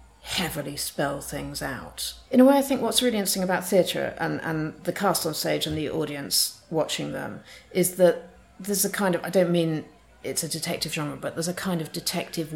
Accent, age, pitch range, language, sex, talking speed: British, 50-69, 150-200 Hz, English, female, 210 wpm